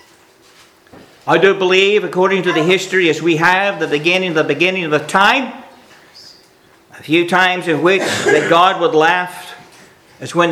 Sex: male